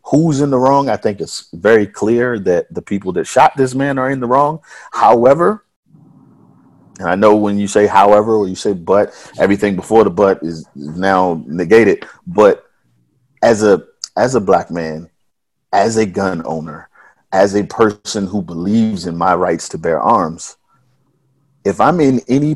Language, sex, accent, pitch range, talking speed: English, male, American, 100-140 Hz, 175 wpm